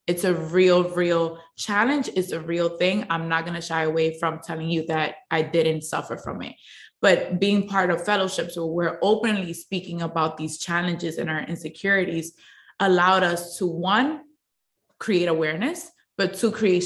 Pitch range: 165-195 Hz